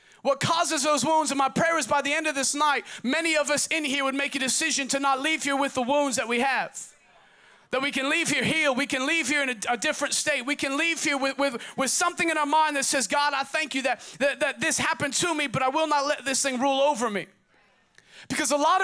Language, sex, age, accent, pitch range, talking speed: English, male, 30-49, American, 210-300 Hz, 270 wpm